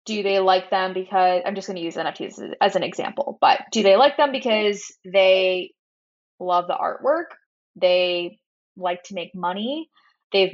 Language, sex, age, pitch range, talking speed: English, female, 10-29, 180-215 Hz, 170 wpm